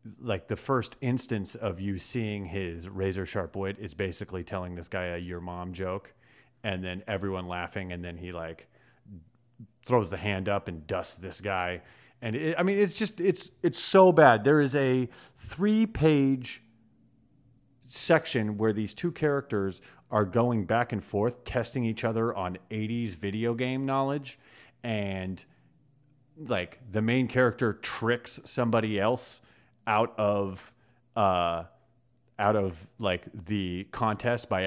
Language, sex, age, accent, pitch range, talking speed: English, male, 30-49, American, 95-125 Hz, 150 wpm